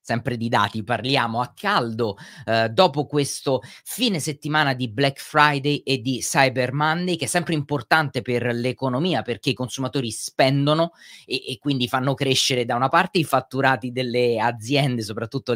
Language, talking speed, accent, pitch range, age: Italian, 160 wpm, native, 120-145 Hz, 30-49